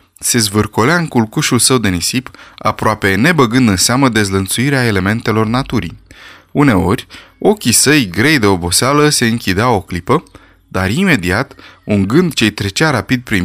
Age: 20-39